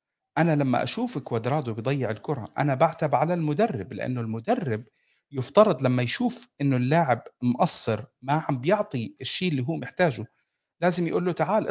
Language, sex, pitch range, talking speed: Arabic, male, 125-165 Hz, 150 wpm